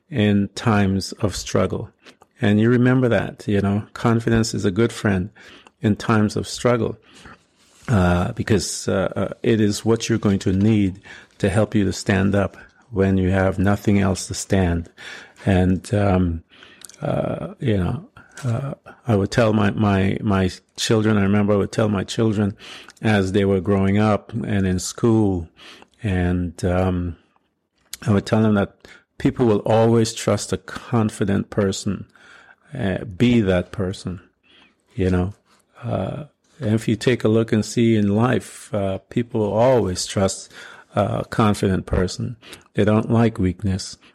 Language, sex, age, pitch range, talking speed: English, male, 50-69, 95-110 Hz, 150 wpm